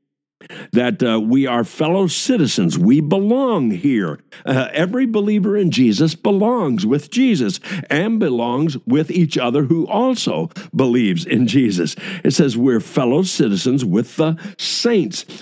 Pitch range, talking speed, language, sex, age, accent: 135-195 Hz, 135 wpm, English, male, 60-79, American